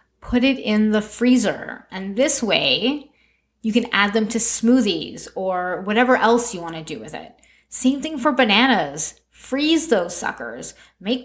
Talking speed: 165 wpm